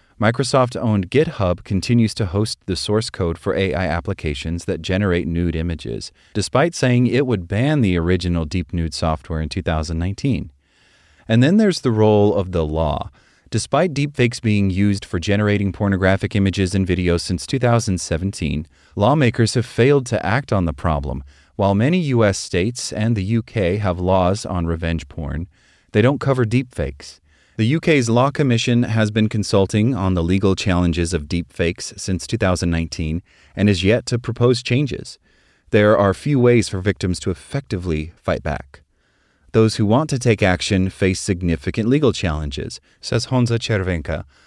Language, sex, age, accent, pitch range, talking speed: English, male, 30-49, American, 85-115 Hz, 155 wpm